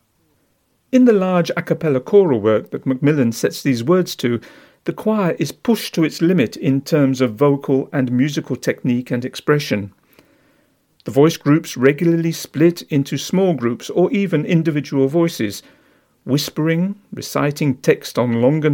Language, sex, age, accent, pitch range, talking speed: Dutch, male, 50-69, British, 130-175 Hz, 145 wpm